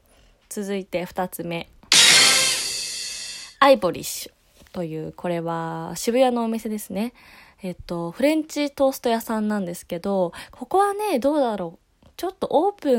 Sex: female